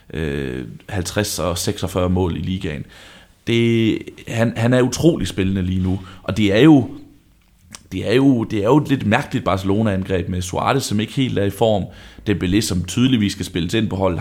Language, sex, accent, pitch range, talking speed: Danish, male, native, 90-100 Hz, 185 wpm